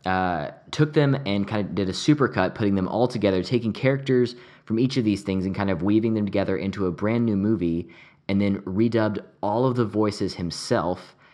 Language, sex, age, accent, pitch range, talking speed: English, male, 20-39, American, 95-125 Hz, 205 wpm